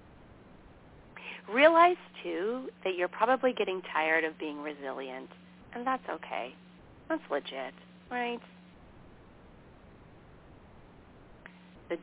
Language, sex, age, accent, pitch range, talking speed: English, female, 40-59, American, 165-230 Hz, 85 wpm